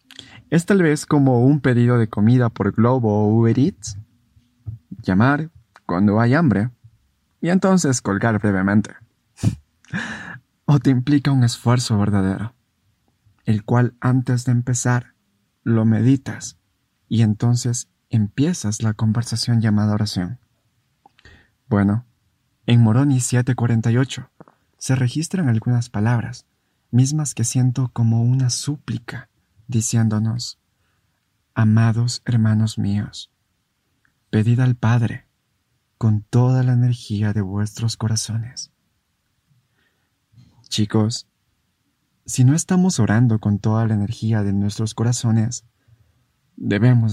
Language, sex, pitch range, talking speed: Spanish, male, 110-125 Hz, 105 wpm